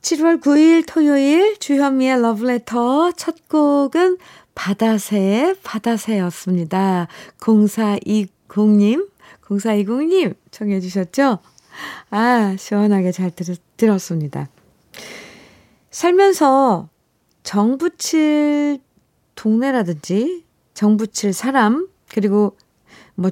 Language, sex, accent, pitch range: Korean, female, native, 180-245 Hz